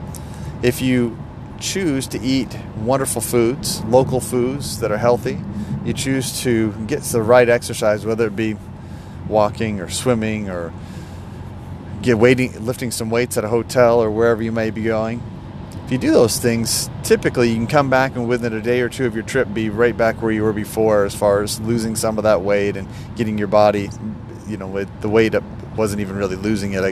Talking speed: 200 wpm